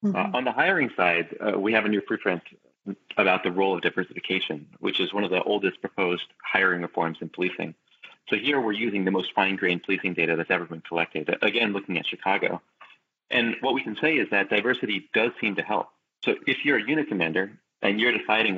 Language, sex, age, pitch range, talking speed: English, male, 30-49, 85-100 Hz, 210 wpm